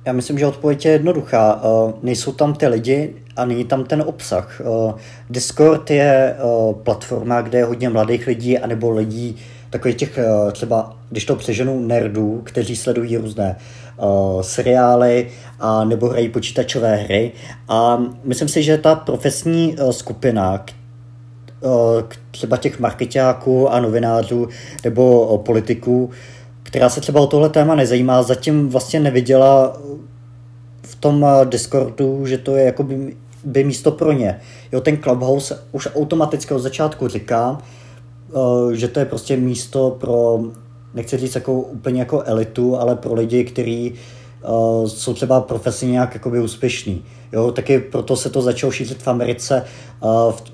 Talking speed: 140 wpm